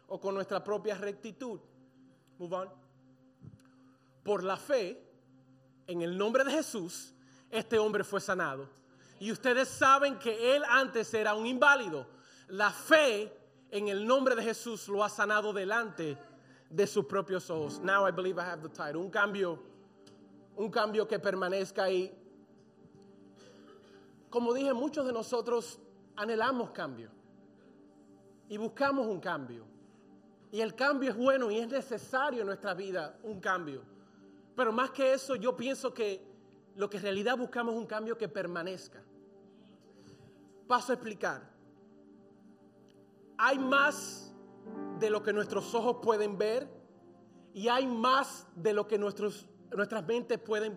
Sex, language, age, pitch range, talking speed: male, English, 30-49, 185-240 Hz, 140 wpm